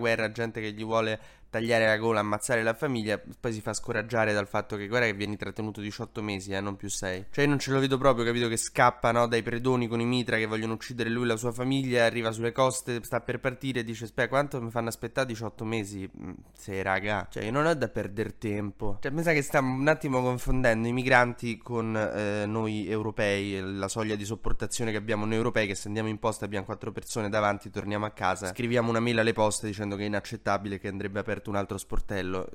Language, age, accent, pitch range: Italian, 20-39, native, 105-125 Hz